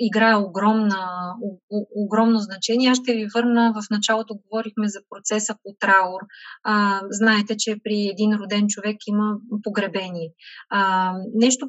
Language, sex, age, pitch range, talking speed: Bulgarian, female, 20-39, 210-240 Hz, 130 wpm